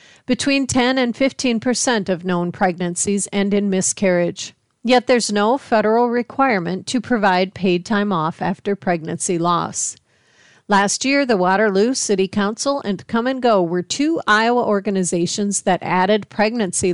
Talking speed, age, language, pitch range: 140 wpm, 40-59, English, 180-220 Hz